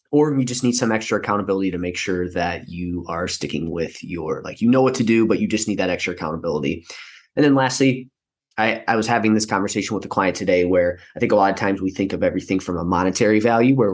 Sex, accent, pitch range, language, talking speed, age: male, American, 90-110 Hz, English, 250 wpm, 20-39